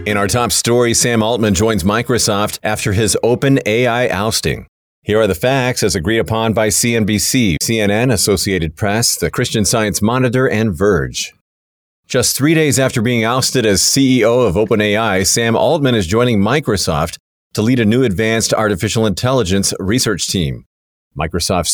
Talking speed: 150 wpm